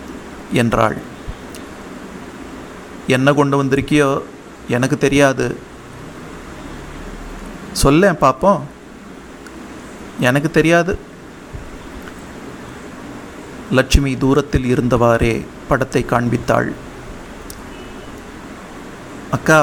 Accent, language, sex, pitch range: native, Tamil, male, 125-145 Hz